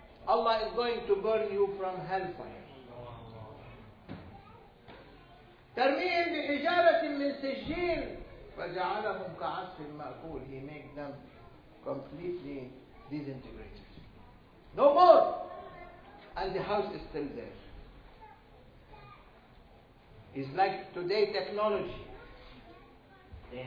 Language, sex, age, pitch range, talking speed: English, male, 60-79, 135-220 Hz, 65 wpm